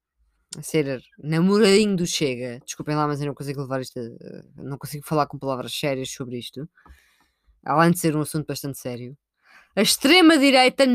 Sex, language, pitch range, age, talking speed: female, Portuguese, 155-255 Hz, 20-39, 175 wpm